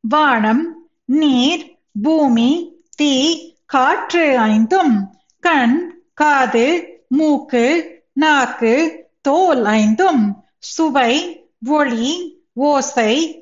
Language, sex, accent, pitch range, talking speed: Tamil, female, native, 240-330 Hz, 65 wpm